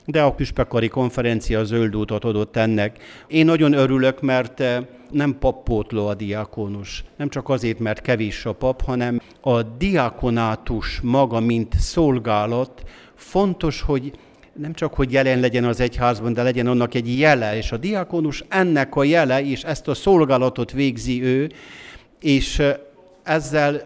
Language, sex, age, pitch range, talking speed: Hungarian, male, 50-69, 115-140 Hz, 145 wpm